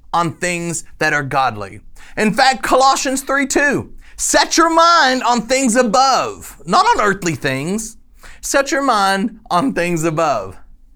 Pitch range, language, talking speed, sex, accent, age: 185-275 Hz, English, 140 wpm, male, American, 40-59